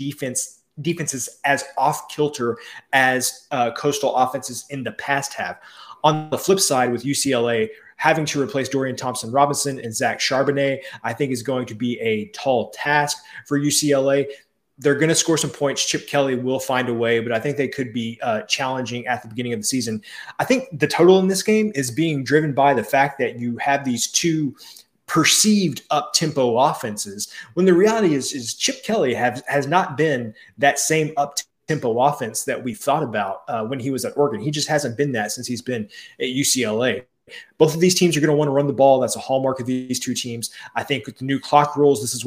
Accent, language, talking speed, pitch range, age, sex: American, English, 210 wpm, 125-145 Hz, 20-39, male